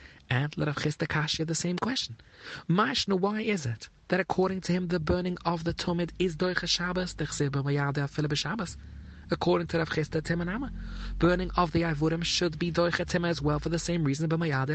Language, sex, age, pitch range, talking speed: English, male, 30-49, 145-180 Hz, 185 wpm